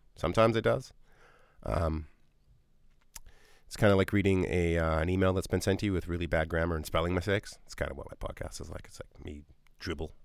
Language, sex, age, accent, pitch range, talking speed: English, male, 30-49, American, 80-115 Hz, 215 wpm